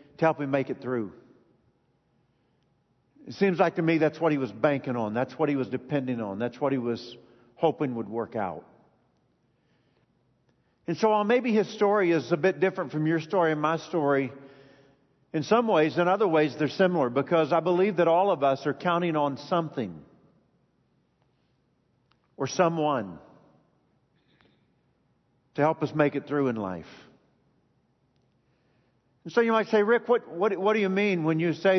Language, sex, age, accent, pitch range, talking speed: English, male, 50-69, American, 145-195 Hz, 170 wpm